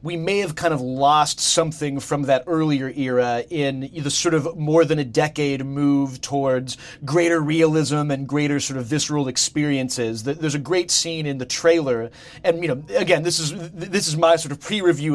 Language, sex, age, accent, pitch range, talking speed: English, male, 30-49, American, 135-165 Hz, 190 wpm